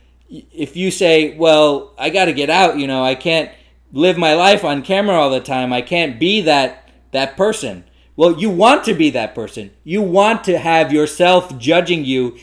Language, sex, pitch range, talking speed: English, male, 140-185 Hz, 200 wpm